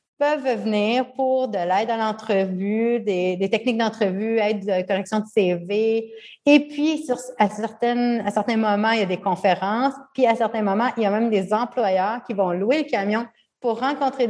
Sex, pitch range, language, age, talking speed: female, 195-240 Hz, French, 30-49, 195 wpm